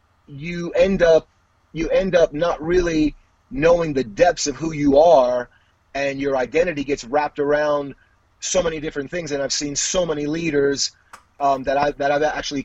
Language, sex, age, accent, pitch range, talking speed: English, male, 30-49, American, 125-155 Hz, 175 wpm